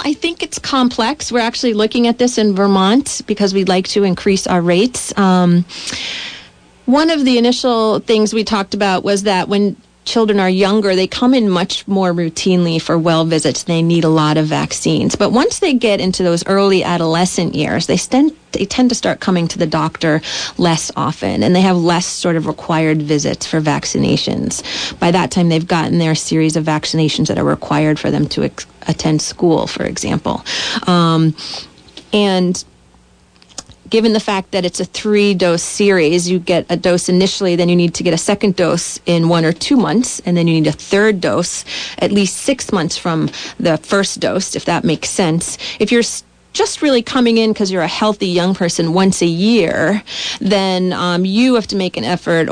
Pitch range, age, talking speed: 170-215 Hz, 30-49, 190 wpm